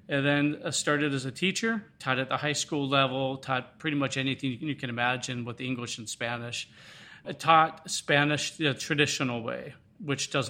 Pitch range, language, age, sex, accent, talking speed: 125-145 Hz, English, 40-59, male, American, 185 wpm